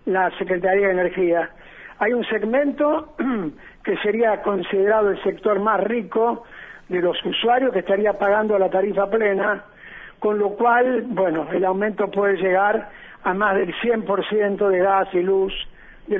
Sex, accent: male, Argentinian